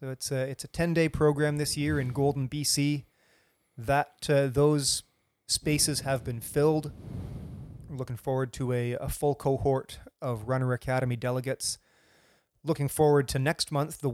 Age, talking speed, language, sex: 30-49, 155 wpm, English, male